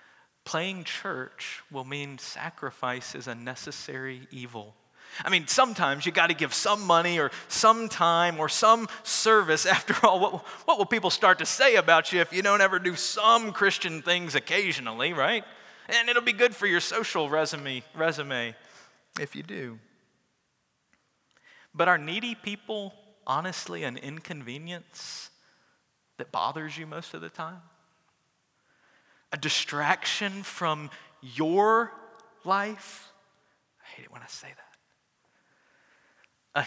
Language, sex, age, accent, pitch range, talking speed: English, male, 30-49, American, 155-195 Hz, 135 wpm